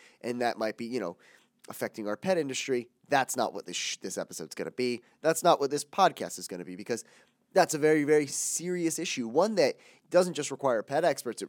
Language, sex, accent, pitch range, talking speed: English, male, American, 115-170 Hz, 225 wpm